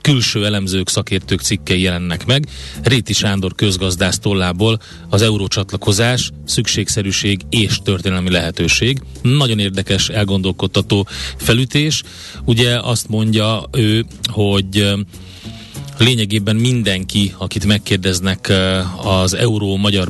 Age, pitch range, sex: 30-49, 95-110 Hz, male